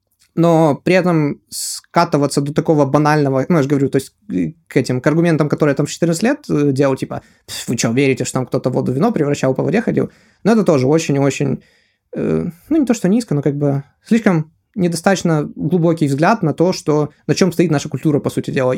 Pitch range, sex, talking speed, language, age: 140-185 Hz, male, 200 wpm, Russian, 20-39